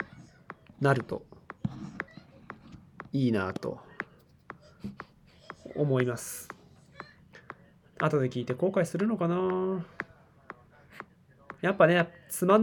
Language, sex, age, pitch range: Japanese, male, 20-39, 125-160 Hz